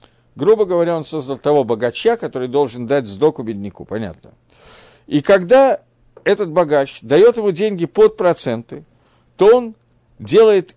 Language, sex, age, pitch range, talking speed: Russian, male, 50-69, 130-195 Hz, 130 wpm